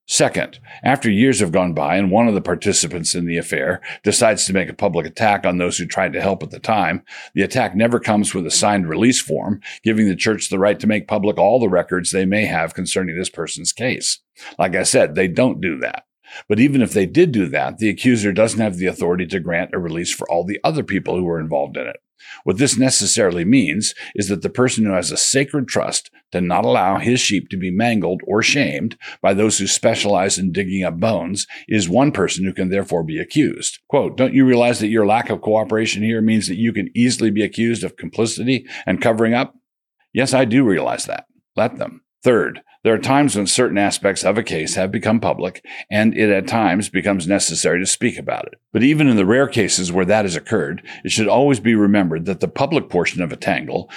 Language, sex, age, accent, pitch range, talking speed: English, male, 50-69, American, 95-115 Hz, 225 wpm